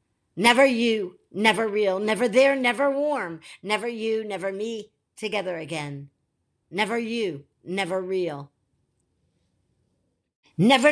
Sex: female